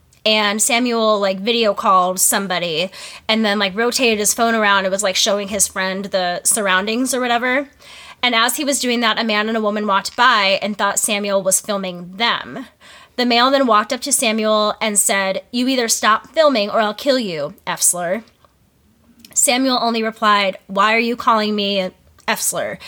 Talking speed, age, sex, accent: 180 wpm, 10-29, female, American